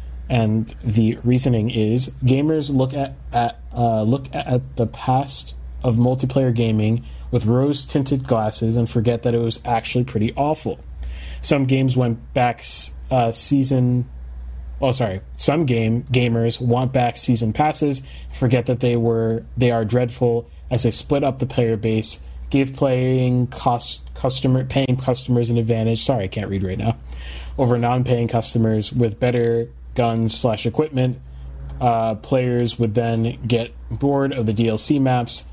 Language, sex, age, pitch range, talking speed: English, male, 30-49, 110-125 Hz, 155 wpm